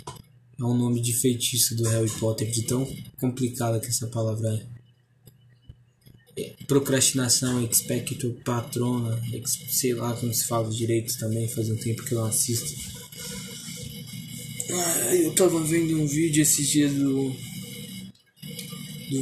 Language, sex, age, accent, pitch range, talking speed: Portuguese, male, 20-39, Brazilian, 120-140 Hz, 135 wpm